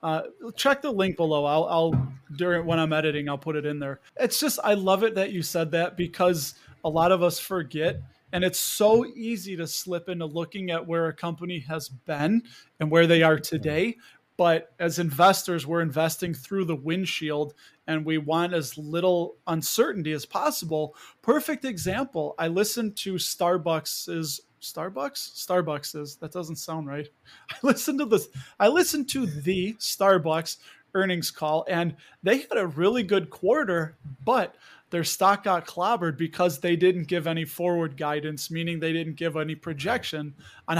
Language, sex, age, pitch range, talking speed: English, male, 20-39, 155-185 Hz, 170 wpm